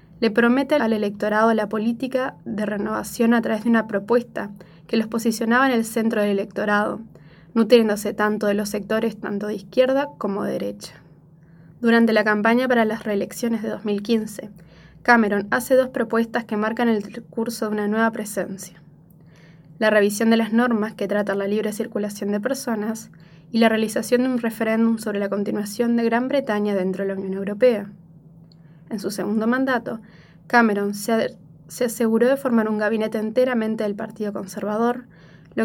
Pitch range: 195-230 Hz